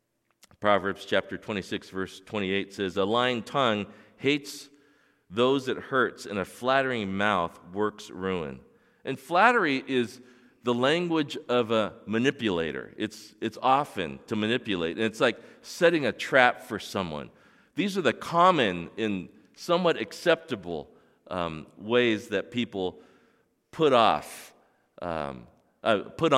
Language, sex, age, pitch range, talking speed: English, male, 40-59, 105-145 Hz, 125 wpm